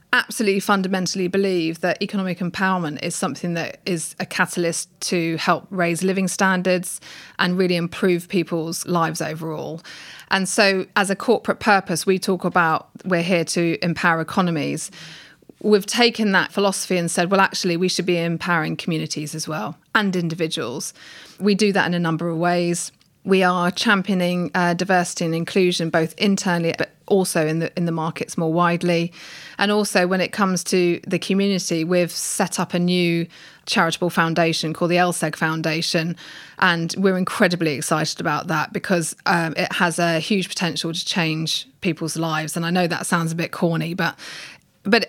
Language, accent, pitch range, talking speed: English, British, 165-190 Hz, 170 wpm